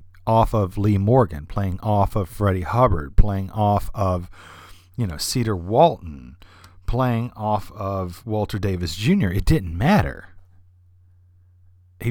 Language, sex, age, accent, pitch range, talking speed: English, male, 40-59, American, 90-110 Hz, 130 wpm